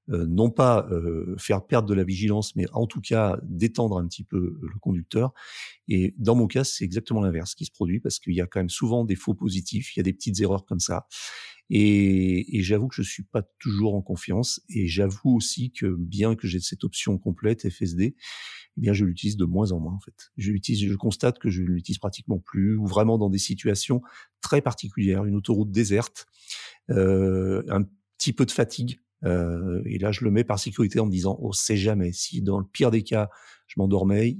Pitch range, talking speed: 95-110 Hz, 220 wpm